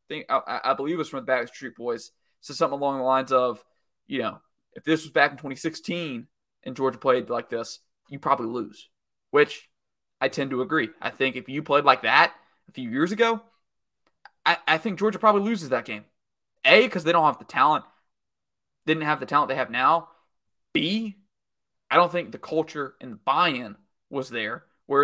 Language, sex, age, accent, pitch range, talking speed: English, male, 20-39, American, 135-180 Hz, 200 wpm